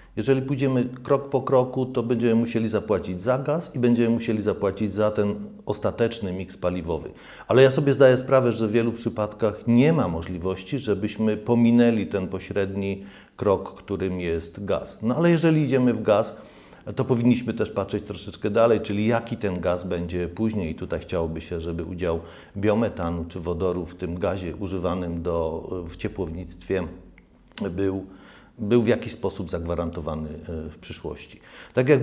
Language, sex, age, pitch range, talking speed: Polish, male, 40-59, 90-115 Hz, 155 wpm